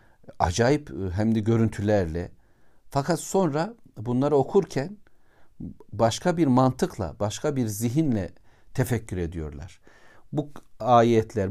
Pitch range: 105-135 Hz